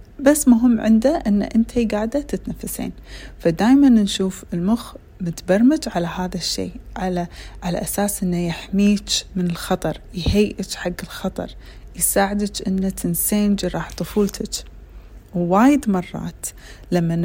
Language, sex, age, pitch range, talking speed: Arabic, female, 30-49, 160-200 Hz, 110 wpm